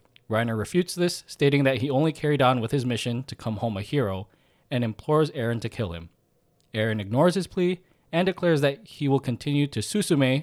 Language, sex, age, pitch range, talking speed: English, male, 20-39, 105-140 Hz, 200 wpm